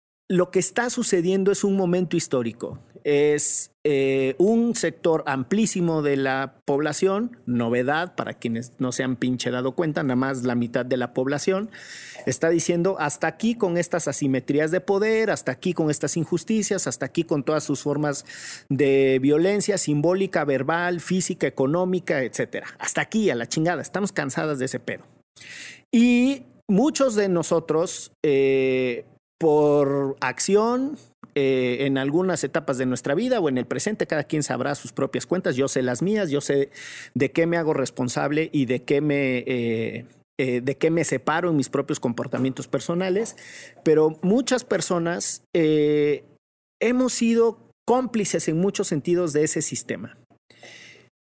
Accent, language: Mexican, Spanish